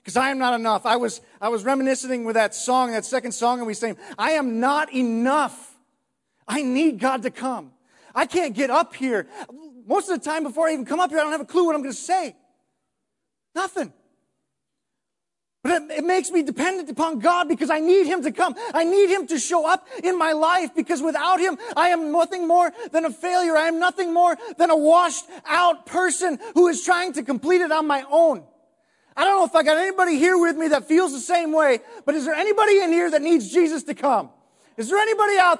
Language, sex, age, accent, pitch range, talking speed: English, male, 30-49, American, 275-345 Hz, 225 wpm